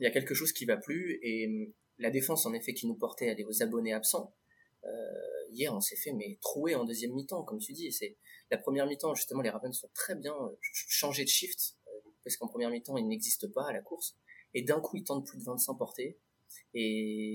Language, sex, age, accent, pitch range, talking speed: French, male, 20-39, French, 110-150 Hz, 235 wpm